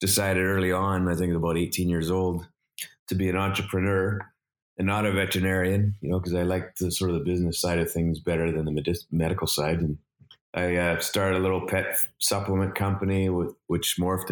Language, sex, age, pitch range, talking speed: English, male, 30-49, 85-100 Hz, 200 wpm